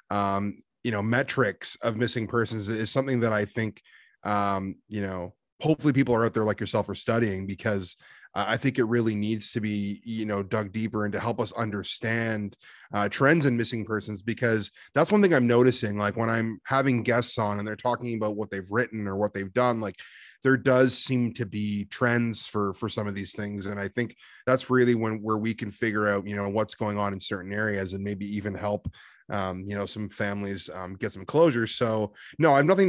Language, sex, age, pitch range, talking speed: English, male, 30-49, 100-120 Hz, 215 wpm